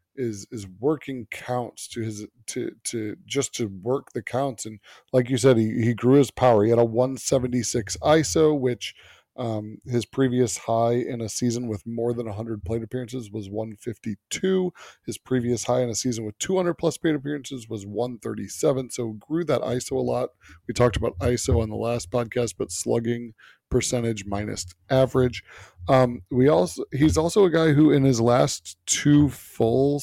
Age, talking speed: 20-39, 175 wpm